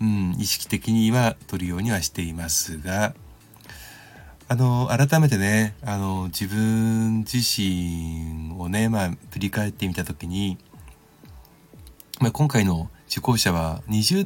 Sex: male